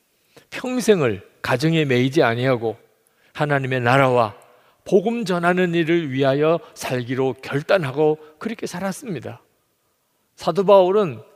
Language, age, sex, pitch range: Korean, 50-69, male, 125-185 Hz